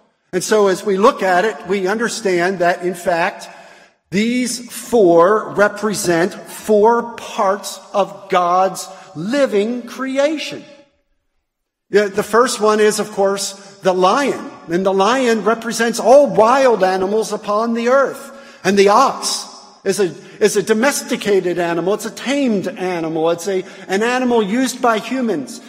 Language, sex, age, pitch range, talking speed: English, male, 50-69, 190-240 Hz, 140 wpm